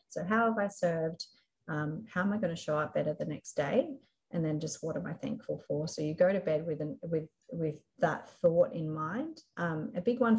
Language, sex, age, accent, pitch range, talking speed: English, female, 30-49, Australian, 150-185 Hz, 245 wpm